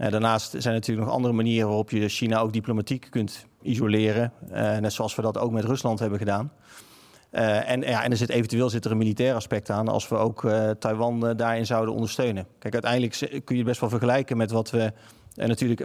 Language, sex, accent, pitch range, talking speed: Dutch, male, Dutch, 115-135 Hz, 225 wpm